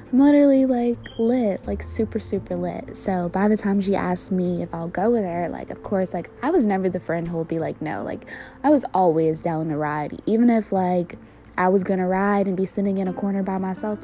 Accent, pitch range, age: American, 170-210 Hz, 20-39